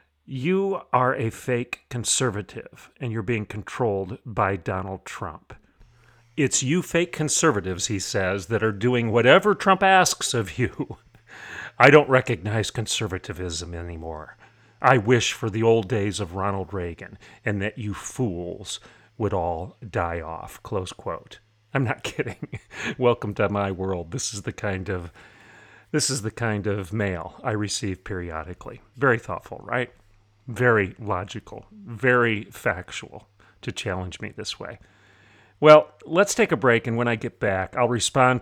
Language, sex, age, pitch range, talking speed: English, male, 40-59, 100-130 Hz, 150 wpm